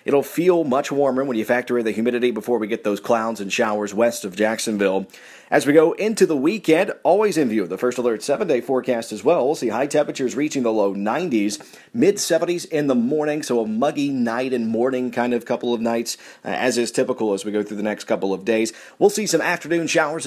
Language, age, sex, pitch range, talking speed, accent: English, 30-49, male, 110-145 Hz, 230 wpm, American